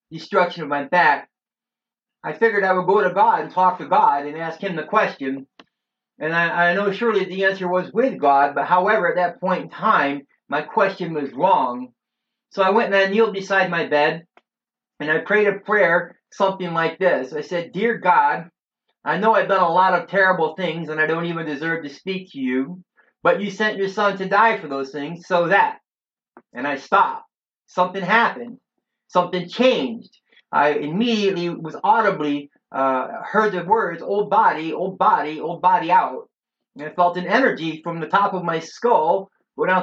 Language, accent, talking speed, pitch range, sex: English, American, 190 wpm, 165-210 Hz, male